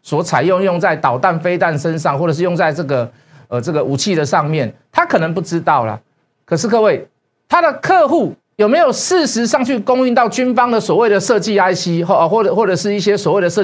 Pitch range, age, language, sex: 150-215 Hz, 50-69, Chinese, male